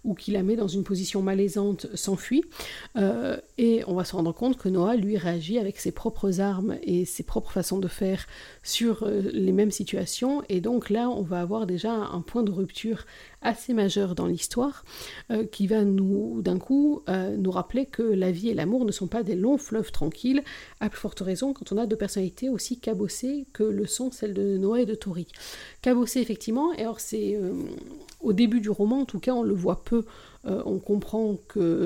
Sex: female